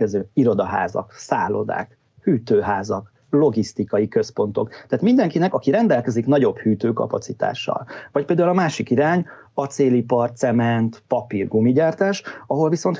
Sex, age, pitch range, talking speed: male, 30-49, 115-150 Hz, 95 wpm